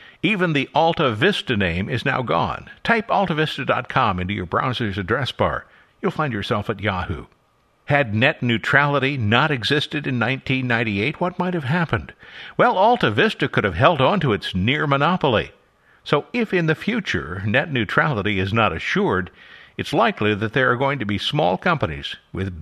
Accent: American